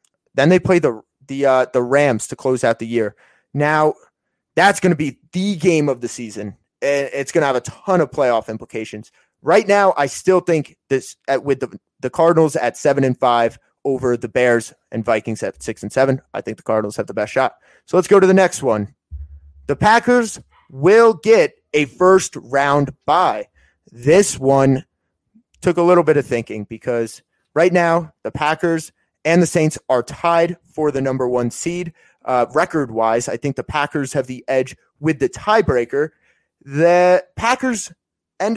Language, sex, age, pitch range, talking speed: English, male, 30-49, 125-180 Hz, 180 wpm